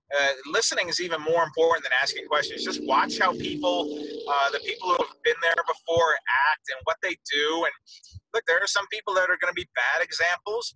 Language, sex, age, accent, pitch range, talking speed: English, male, 30-49, American, 160-200 Hz, 220 wpm